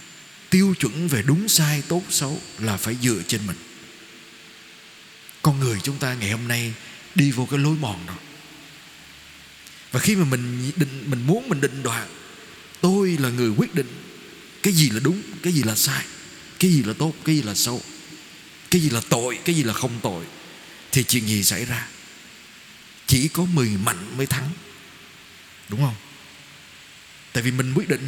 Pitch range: 120-155 Hz